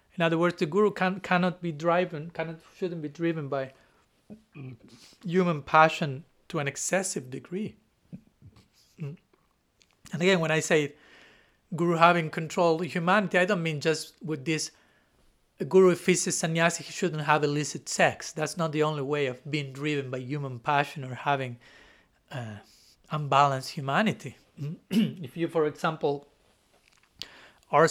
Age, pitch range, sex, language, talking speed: 40-59, 145-170 Hz, male, English, 140 wpm